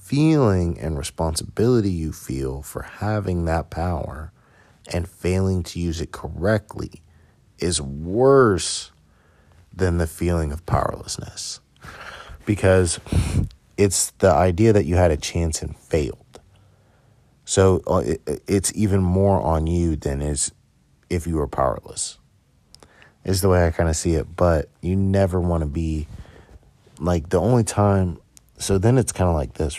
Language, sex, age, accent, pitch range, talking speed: English, male, 30-49, American, 80-100 Hz, 140 wpm